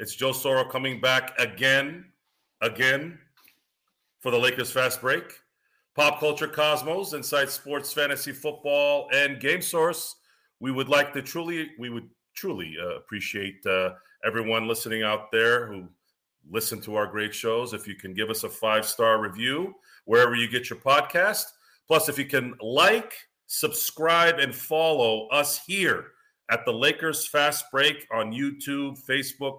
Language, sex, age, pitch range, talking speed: English, male, 40-59, 115-140 Hz, 150 wpm